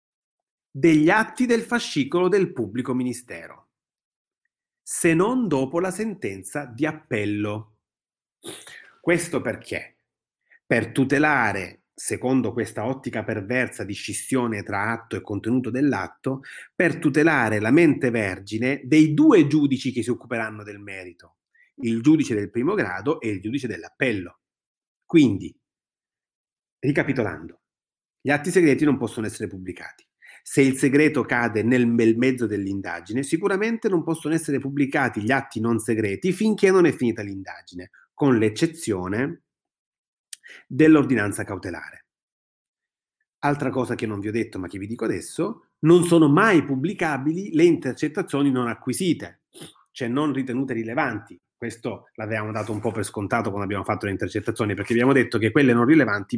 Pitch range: 105-145 Hz